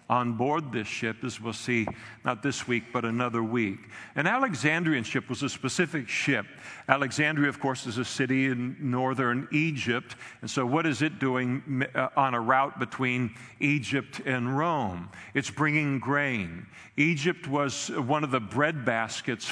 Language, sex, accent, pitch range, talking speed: English, male, American, 120-140 Hz, 160 wpm